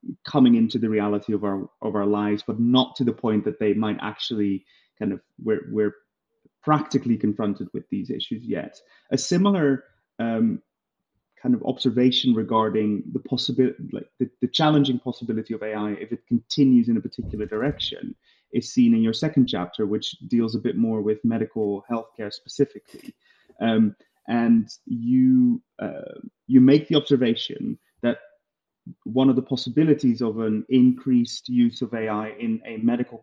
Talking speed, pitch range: 155 wpm, 110-140 Hz